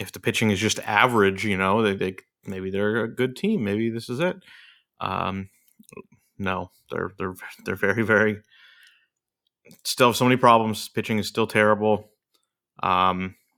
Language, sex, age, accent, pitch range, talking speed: English, male, 30-49, American, 95-115 Hz, 160 wpm